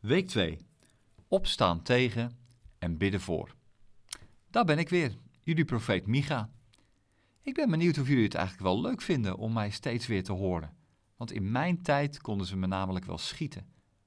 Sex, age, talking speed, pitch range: male, 50-69, 170 wpm, 100-140 Hz